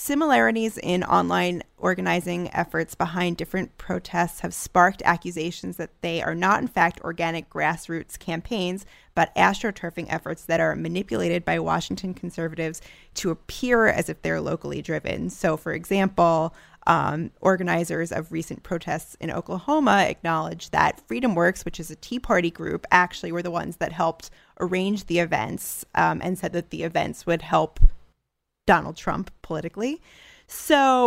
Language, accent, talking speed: English, American, 145 wpm